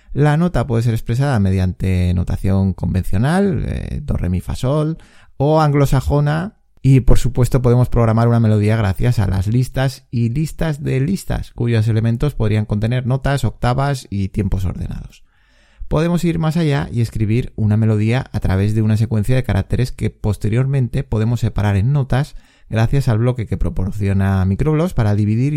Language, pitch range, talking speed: Spanish, 100-130 Hz, 160 wpm